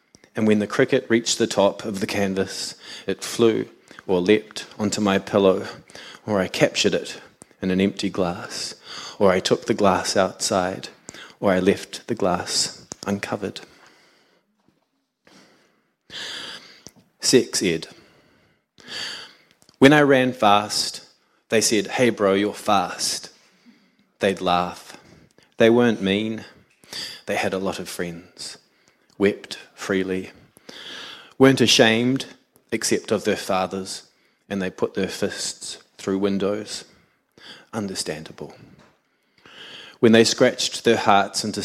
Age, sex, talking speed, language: 20-39, male, 120 wpm, English